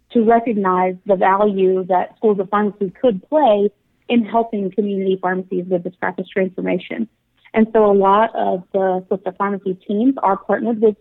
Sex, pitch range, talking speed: female, 195-225 Hz, 165 wpm